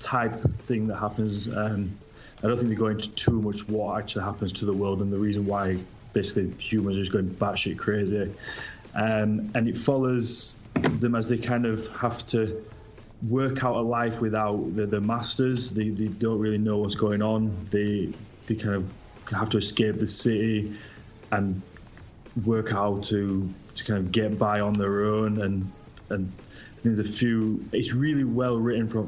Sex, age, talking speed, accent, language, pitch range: male, 20-39, 180 wpm, British, English, 105-115 Hz